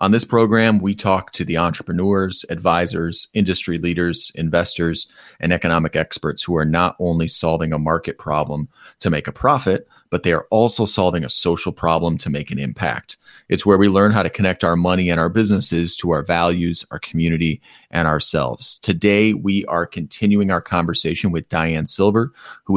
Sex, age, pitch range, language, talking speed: male, 30-49, 85-100 Hz, English, 180 wpm